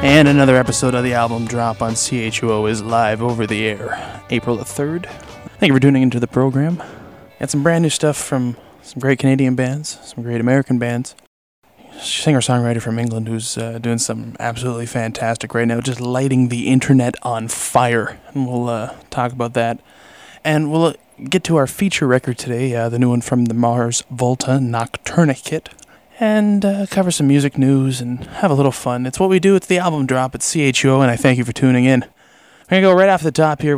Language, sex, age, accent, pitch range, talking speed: English, male, 20-39, American, 120-145 Hz, 205 wpm